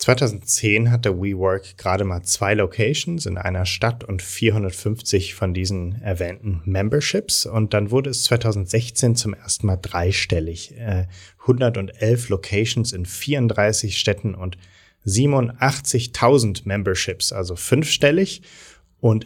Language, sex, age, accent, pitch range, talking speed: German, male, 30-49, German, 95-115 Hz, 110 wpm